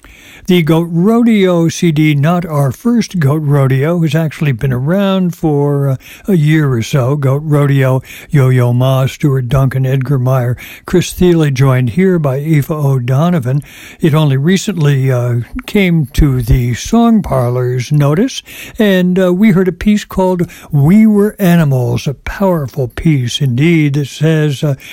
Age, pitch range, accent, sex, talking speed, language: 60-79, 135-180 Hz, American, male, 145 wpm, English